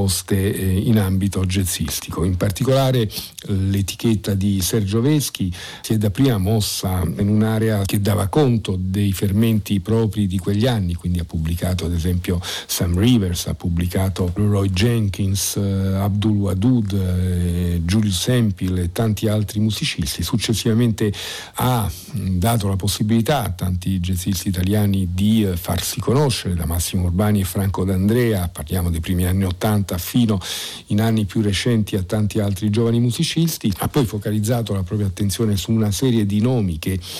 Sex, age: male, 50-69